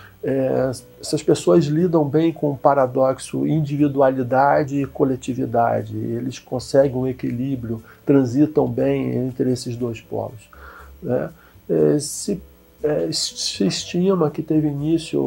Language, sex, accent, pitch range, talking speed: Portuguese, male, Brazilian, 125-150 Hz, 120 wpm